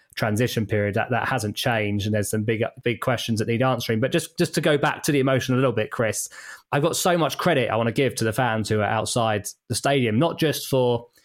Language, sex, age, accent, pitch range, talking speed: English, male, 20-39, British, 115-140 Hz, 255 wpm